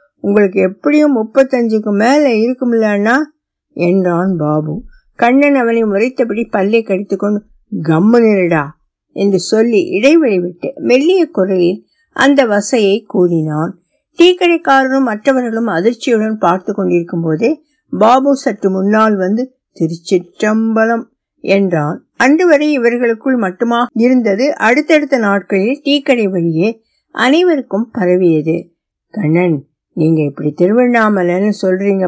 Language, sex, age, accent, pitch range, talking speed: Tamil, female, 60-79, native, 170-240 Hz, 75 wpm